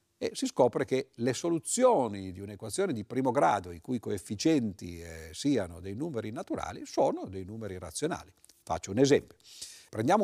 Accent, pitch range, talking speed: native, 90-135 Hz, 160 wpm